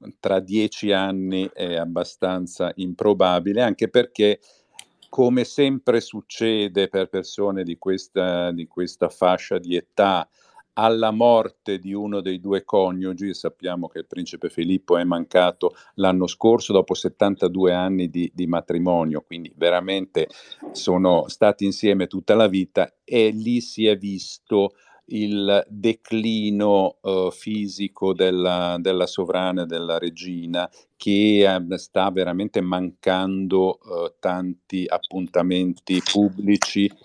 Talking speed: 115 wpm